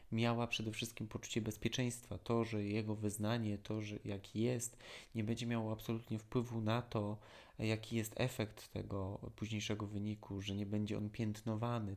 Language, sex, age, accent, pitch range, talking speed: Polish, male, 20-39, native, 105-115 Hz, 155 wpm